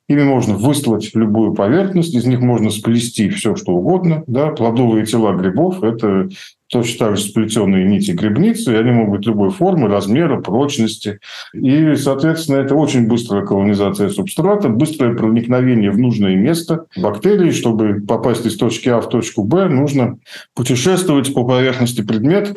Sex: male